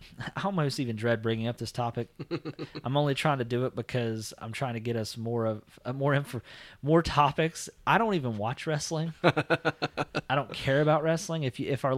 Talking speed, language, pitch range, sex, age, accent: 200 wpm, English, 115-145 Hz, male, 30-49, American